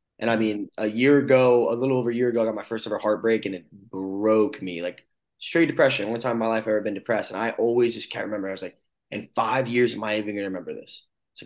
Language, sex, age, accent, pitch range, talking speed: English, male, 20-39, American, 110-130 Hz, 285 wpm